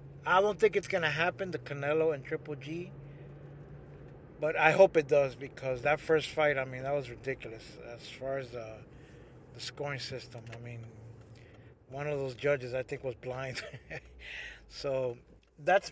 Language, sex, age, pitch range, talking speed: English, male, 30-49, 135-160 Hz, 170 wpm